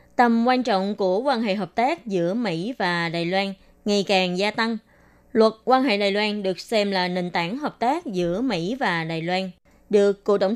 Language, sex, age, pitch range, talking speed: Vietnamese, female, 20-39, 185-225 Hz, 210 wpm